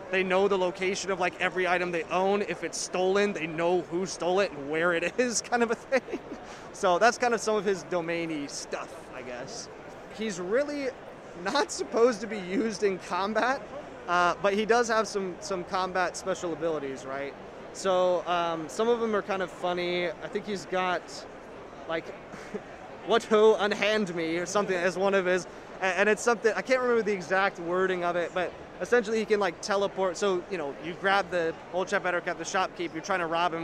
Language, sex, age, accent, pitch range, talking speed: English, male, 20-39, American, 165-200 Hz, 205 wpm